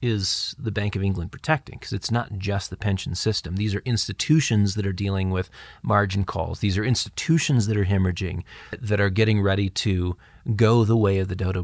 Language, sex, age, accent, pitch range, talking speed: English, male, 30-49, American, 95-115 Hz, 200 wpm